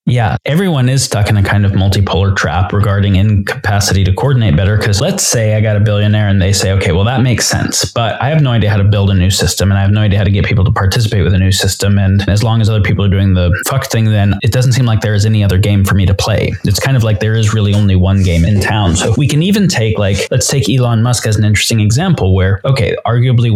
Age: 20-39